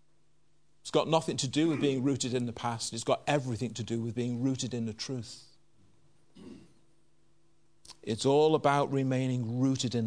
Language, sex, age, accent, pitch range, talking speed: English, male, 40-59, British, 125-160 Hz, 165 wpm